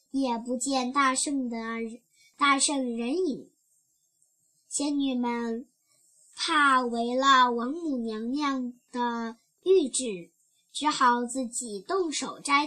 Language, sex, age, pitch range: Chinese, male, 10-29, 235-295 Hz